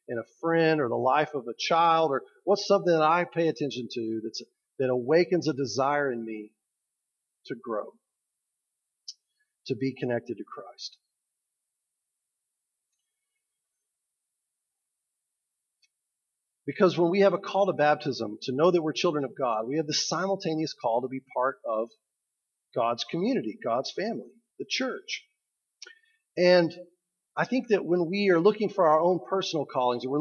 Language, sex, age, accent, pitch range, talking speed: English, male, 40-59, American, 135-190 Hz, 150 wpm